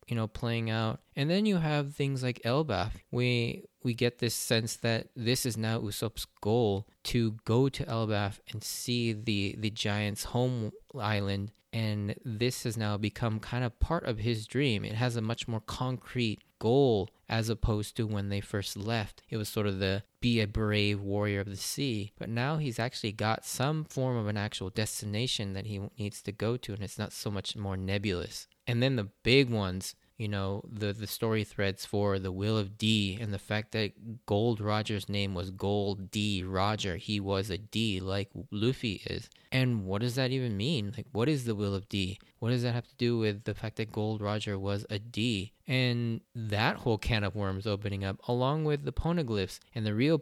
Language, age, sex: English, 20-39, male